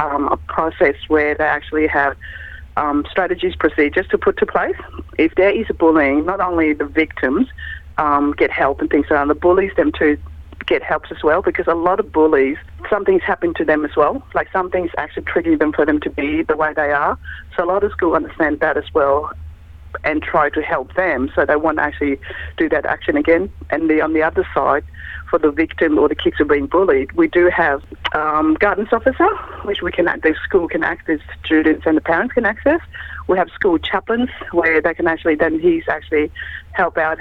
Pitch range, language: 150-190 Hz, Thai